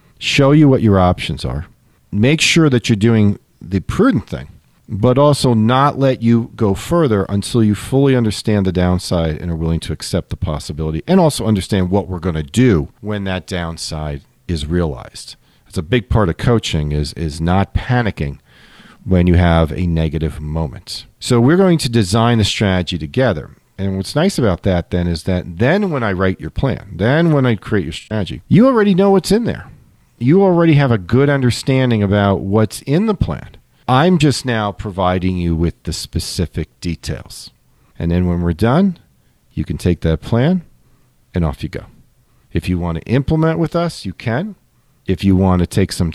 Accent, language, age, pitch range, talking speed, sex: American, English, 40-59, 90-125 Hz, 190 wpm, male